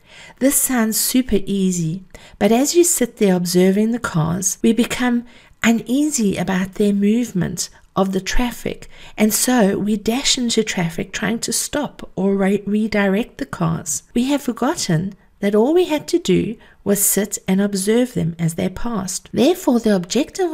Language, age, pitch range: English, 50-69, 185-225 Hz